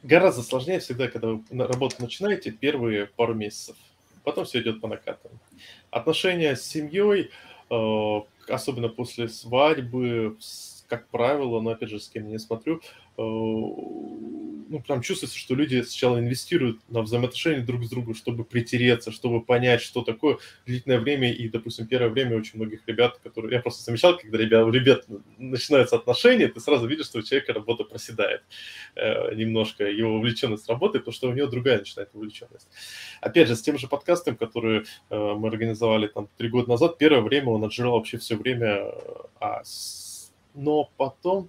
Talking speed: 160 wpm